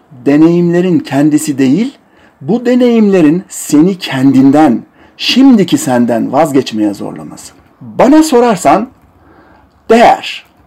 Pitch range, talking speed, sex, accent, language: 140-225 Hz, 80 wpm, male, native, Turkish